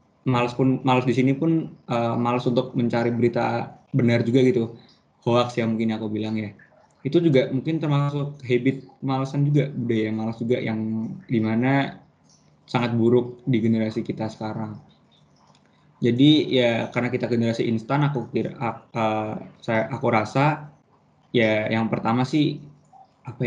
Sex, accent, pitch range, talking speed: male, native, 110-130 Hz, 145 wpm